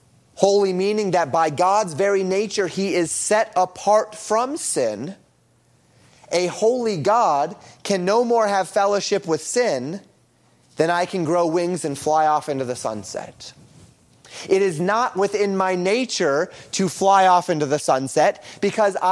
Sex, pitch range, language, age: male, 165-210 Hz, English, 30-49